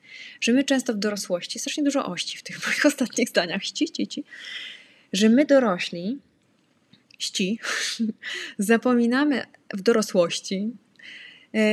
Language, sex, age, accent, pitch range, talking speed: English, female, 20-39, Polish, 190-250 Hz, 100 wpm